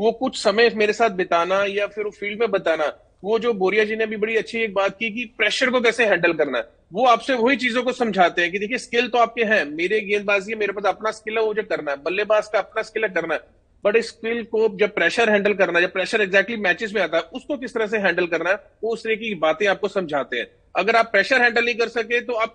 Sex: male